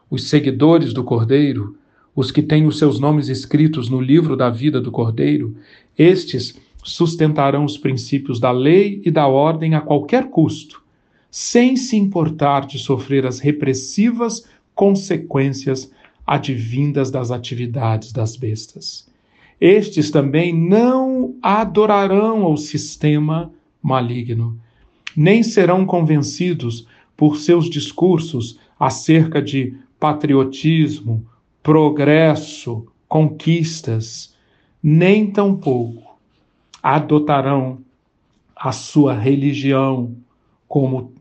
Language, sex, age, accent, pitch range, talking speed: Portuguese, male, 40-59, Brazilian, 130-160 Hz, 100 wpm